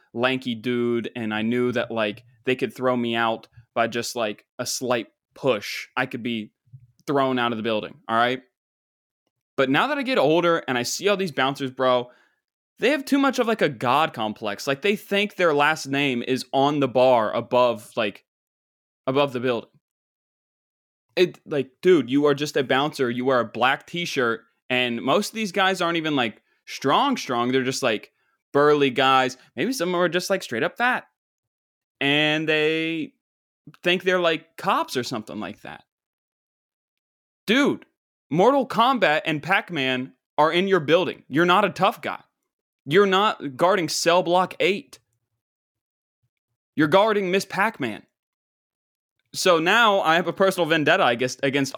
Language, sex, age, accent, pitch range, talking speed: English, male, 20-39, American, 120-170 Hz, 170 wpm